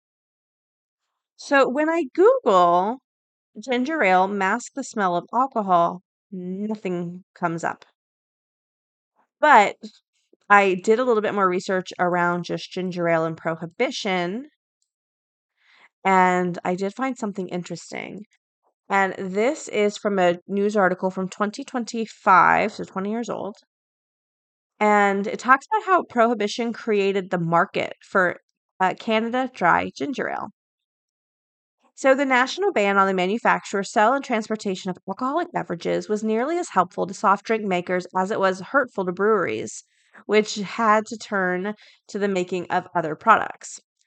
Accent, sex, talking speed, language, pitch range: American, female, 135 wpm, English, 180-225 Hz